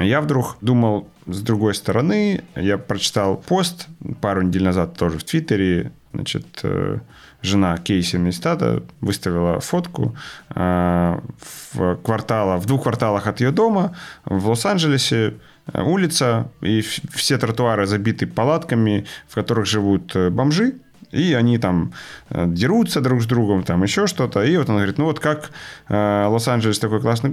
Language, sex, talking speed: Ukrainian, male, 135 wpm